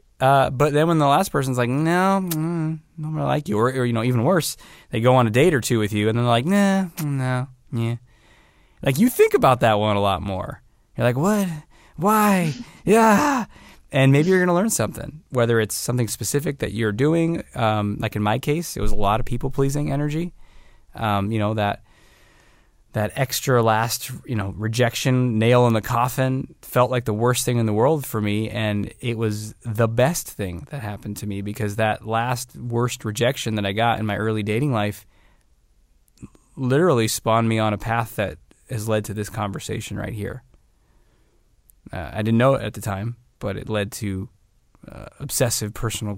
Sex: male